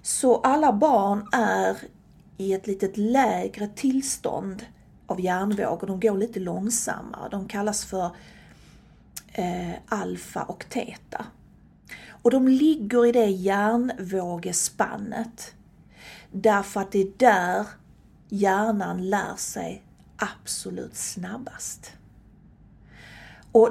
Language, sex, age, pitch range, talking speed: English, female, 40-59, 195-240 Hz, 100 wpm